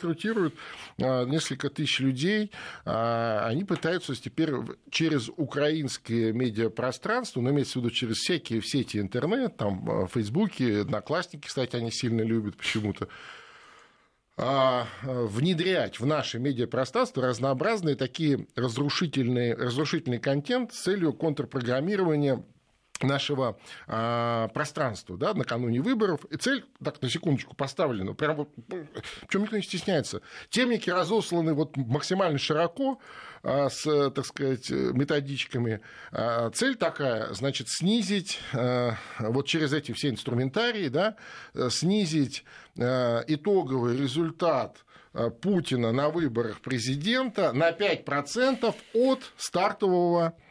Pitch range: 125-175 Hz